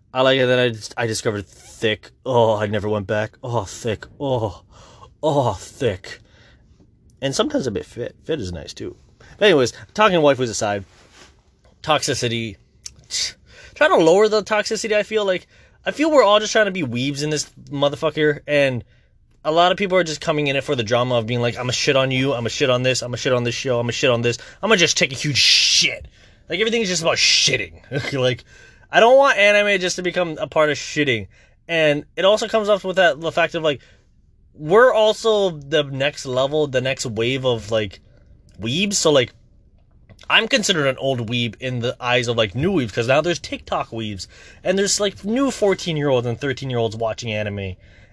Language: English